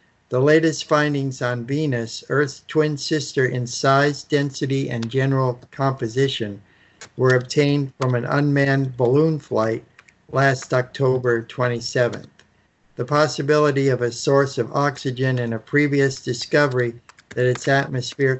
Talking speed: 125 wpm